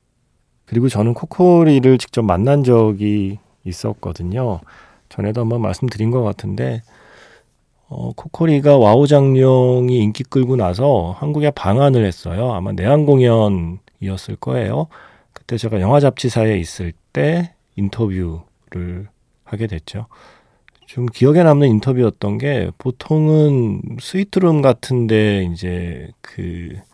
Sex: male